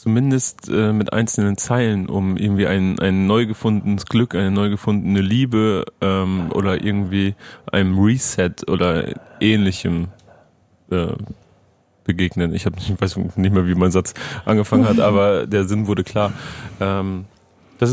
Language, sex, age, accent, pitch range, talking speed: German, male, 30-49, German, 100-115 Hz, 145 wpm